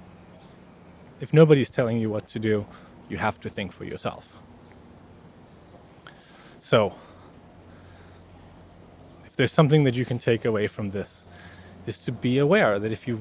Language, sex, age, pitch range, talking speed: English, male, 20-39, 100-130 Hz, 140 wpm